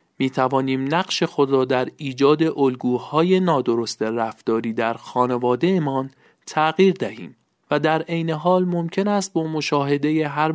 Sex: male